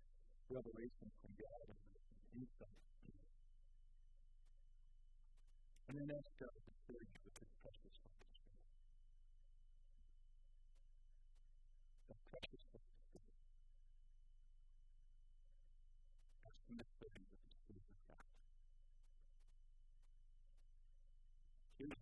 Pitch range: 75-115 Hz